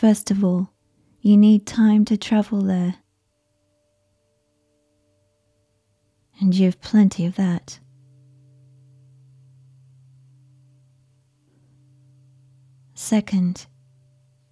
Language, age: English, 30-49